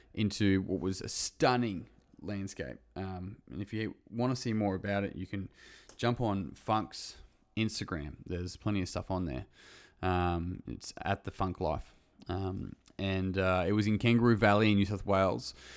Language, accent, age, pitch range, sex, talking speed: English, Australian, 20-39, 90-105 Hz, male, 175 wpm